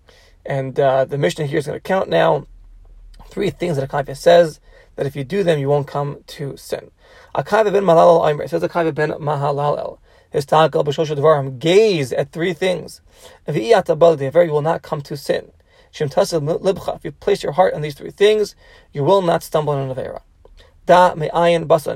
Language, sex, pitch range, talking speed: English, male, 145-175 Hz, 180 wpm